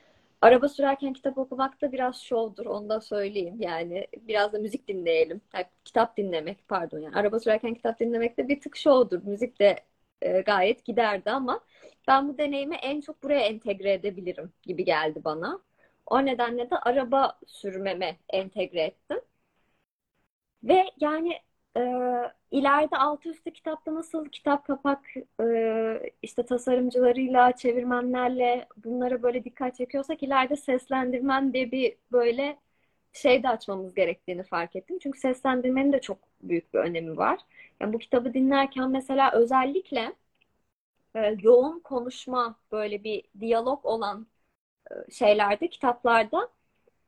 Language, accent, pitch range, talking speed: Turkish, native, 215-275 Hz, 125 wpm